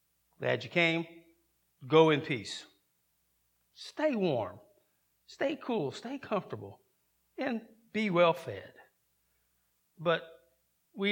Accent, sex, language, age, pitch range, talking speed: American, male, English, 50-69, 165-230 Hz, 95 wpm